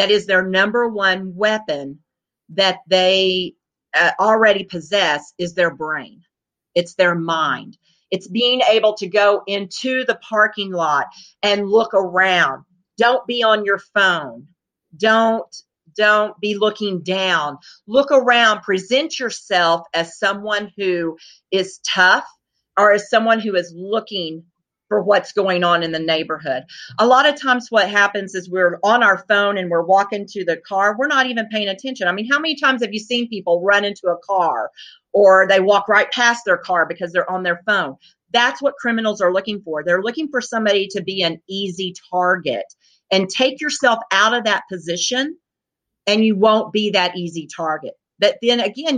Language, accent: English, American